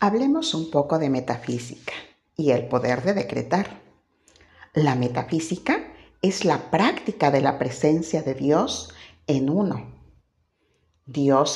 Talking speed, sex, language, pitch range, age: 120 wpm, female, Spanish, 130-190 Hz, 50-69